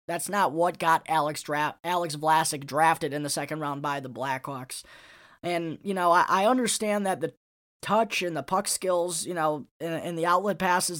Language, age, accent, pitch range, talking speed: English, 10-29, American, 155-185 Hz, 195 wpm